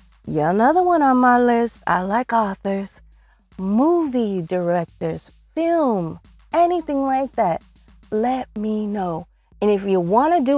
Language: English